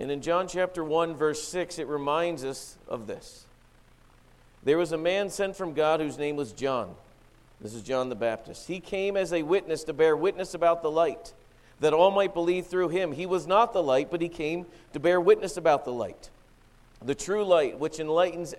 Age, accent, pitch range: 50-69, American, 140-180 Hz